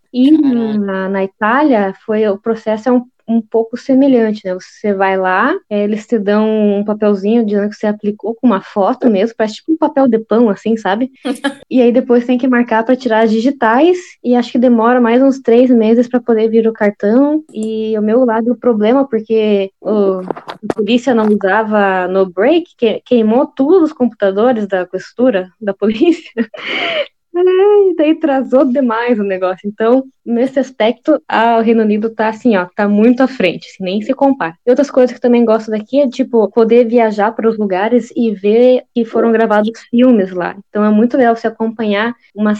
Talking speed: 195 wpm